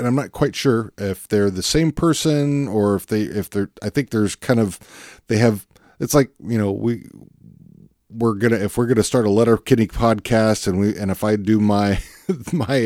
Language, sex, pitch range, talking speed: English, male, 95-120 Hz, 220 wpm